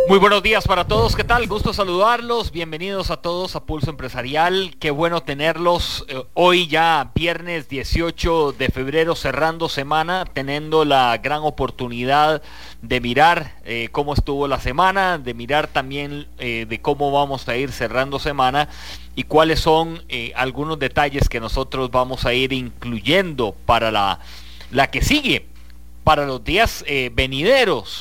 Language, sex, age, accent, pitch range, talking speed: English, male, 40-59, Mexican, 115-170 Hz, 150 wpm